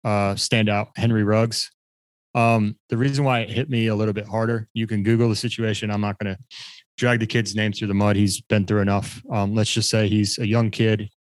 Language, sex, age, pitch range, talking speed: English, male, 20-39, 100-115 Hz, 225 wpm